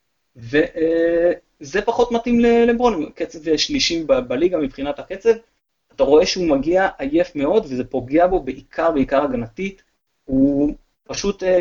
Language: Hebrew